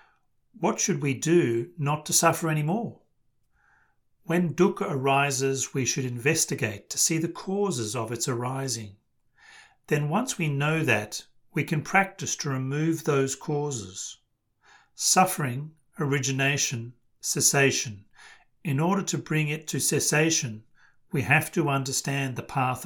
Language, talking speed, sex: English, 130 wpm, male